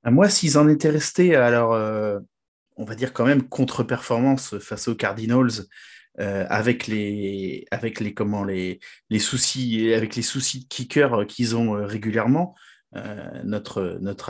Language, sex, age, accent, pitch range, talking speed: French, male, 30-49, French, 105-130 Hz, 150 wpm